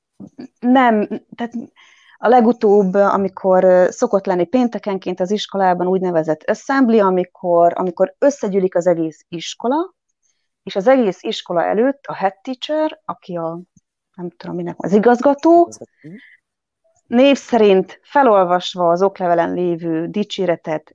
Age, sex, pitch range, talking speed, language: 30-49, female, 175-220 Hz, 110 wpm, Hungarian